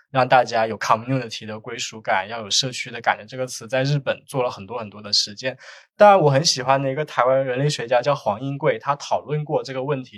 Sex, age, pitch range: male, 20-39, 120-155 Hz